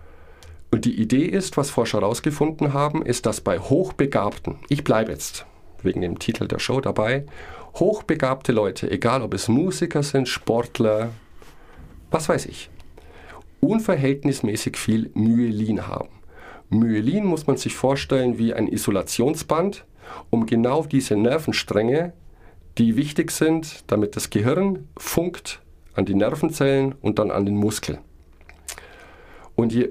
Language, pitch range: German, 95-135 Hz